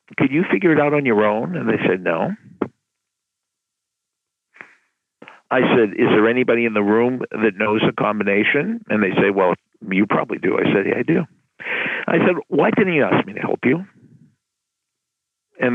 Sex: male